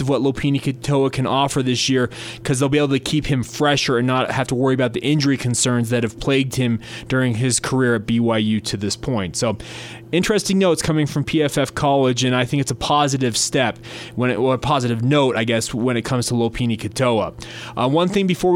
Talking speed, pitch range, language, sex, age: 225 wpm, 125-155 Hz, English, male, 20-39